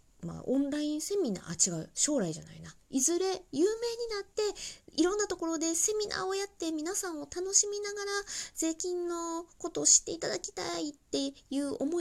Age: 20-39